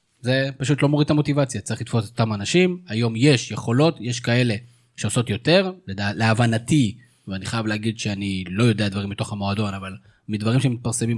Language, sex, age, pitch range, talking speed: Hebrew, male, 20-39, 110-140 Hz, 170 wpm